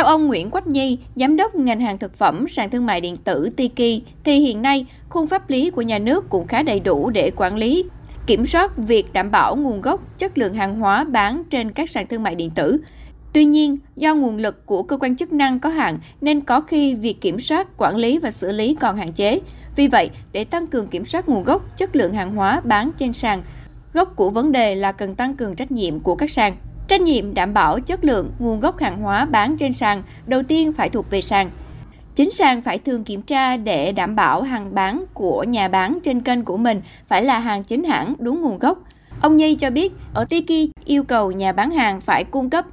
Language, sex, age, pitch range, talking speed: Vietnamese, female, 20-39, 215-295 Hz, 235 wpm